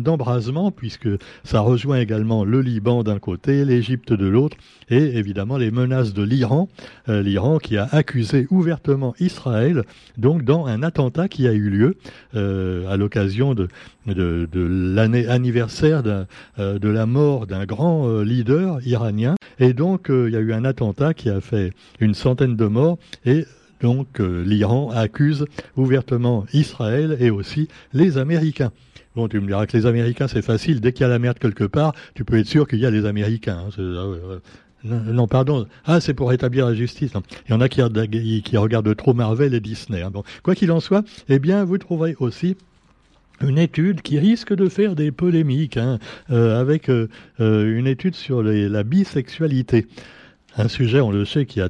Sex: male